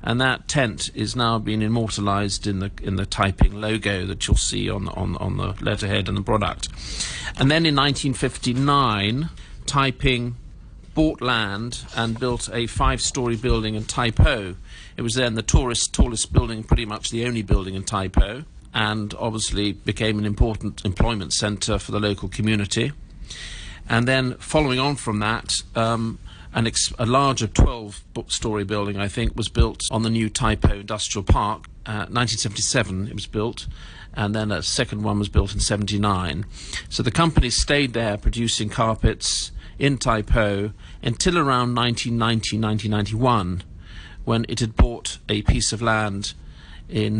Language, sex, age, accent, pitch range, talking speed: English, male, 50-69, British, 100-120 Hz, 160 wpm